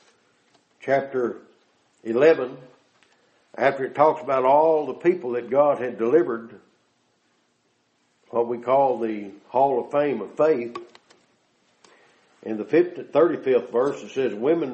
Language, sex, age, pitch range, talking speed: English, male, 60-79, 125-170 Hz, 120 wpm